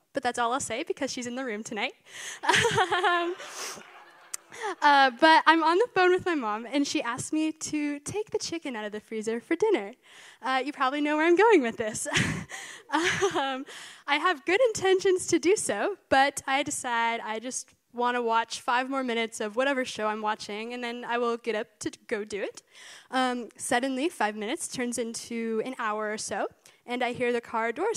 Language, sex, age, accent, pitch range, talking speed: English, female, 10-29, American, 230-315 Hz, 200 wpm